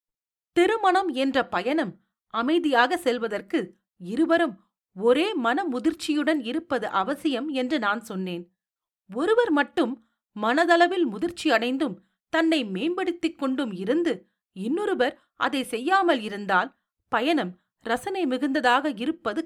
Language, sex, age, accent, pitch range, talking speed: Tamil, female, 40-59, native, 200-310 Hz, 95 wpm